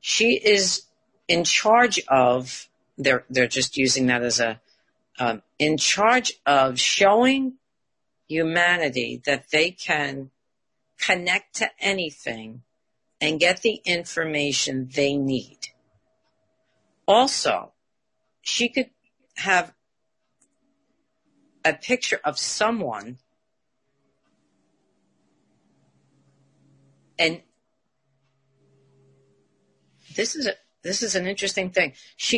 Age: 50-69